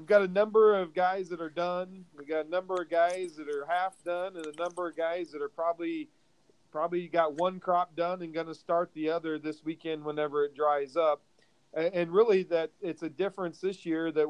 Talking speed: 225 wpm